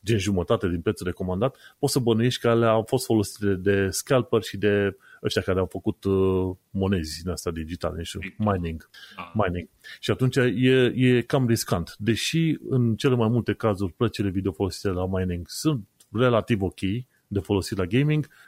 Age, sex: 30-49, male